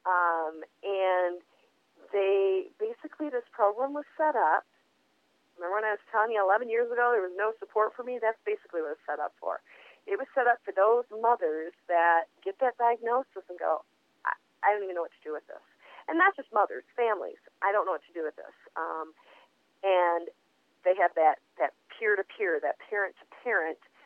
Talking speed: 190 wpm